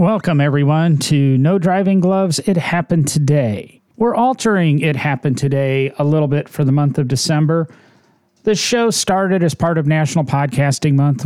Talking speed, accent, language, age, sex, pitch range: 165 wpm, American, English, 40-59, male, 140-185 Hz